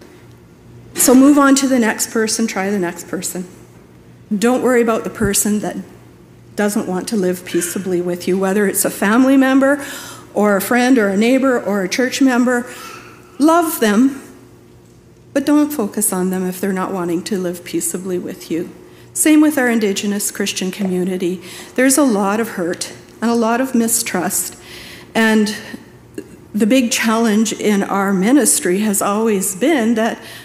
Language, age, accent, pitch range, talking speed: English, 50-69, American, 190-245 Hz, 160 wpm